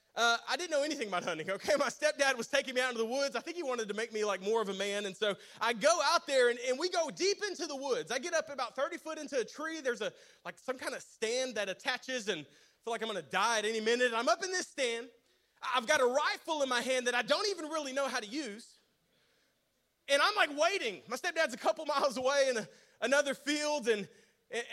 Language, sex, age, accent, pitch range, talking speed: English, male, 30-49, American, 235-345 Hz, 265 wpm